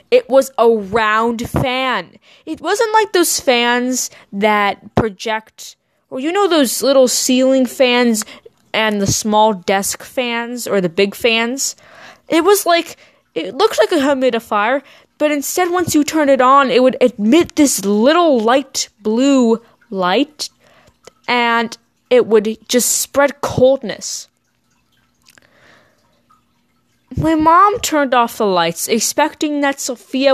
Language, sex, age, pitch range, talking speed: English, female, 20-39, 215-305 Hz, 130 wpm